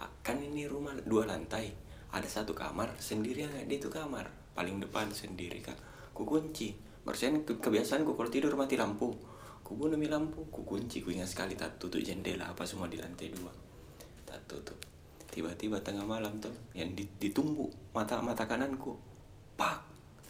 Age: 30-49